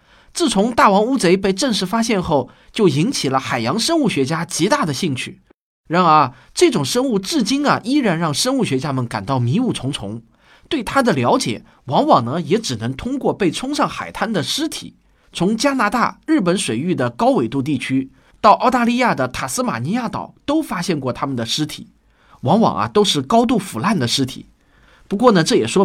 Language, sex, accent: Chinese, male, native